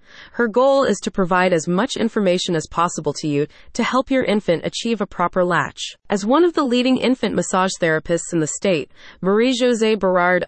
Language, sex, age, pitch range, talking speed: English, female, 30-49, 170-230 Hz, 195 wpm